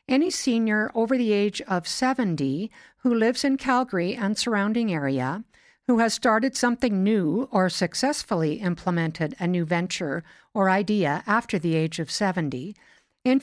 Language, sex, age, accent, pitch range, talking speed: English, female, 60-79, American, 180-240 Hz, 150 wpm